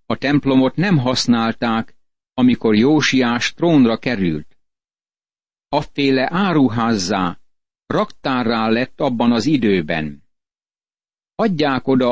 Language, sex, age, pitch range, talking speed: Hungarian, male, 60-79, 115-145 Hz, 85 wpm